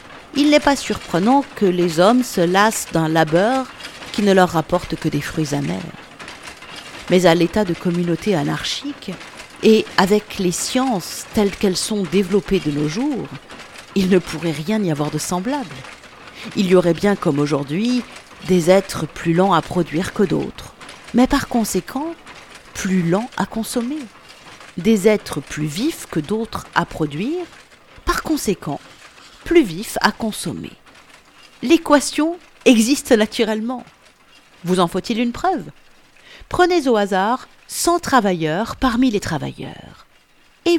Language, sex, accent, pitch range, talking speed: French, female, French, 180-250 Hz, 140 wpm